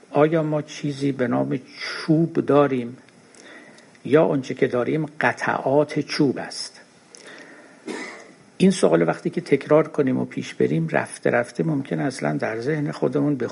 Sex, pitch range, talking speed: male, 140-170 Hz, 140 wpm